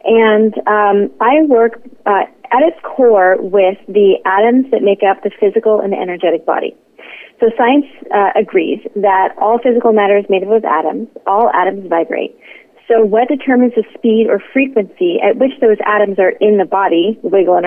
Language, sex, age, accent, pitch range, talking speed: English, female, 30-49, American, 180-225 Hz, 175 wpm